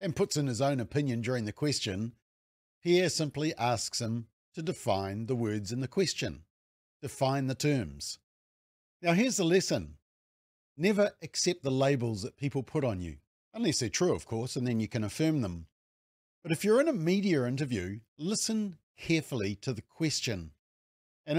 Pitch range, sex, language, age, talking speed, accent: 110-160 Hz, male, English, 50-69, 170 wpm, Australian